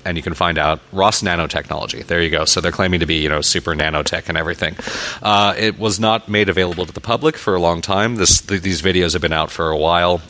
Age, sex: 30-49, male